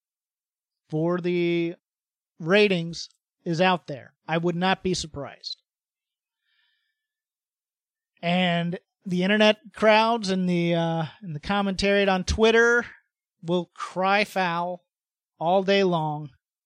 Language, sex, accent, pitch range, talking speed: English, male, American, 170-205 Hz, 105 wpm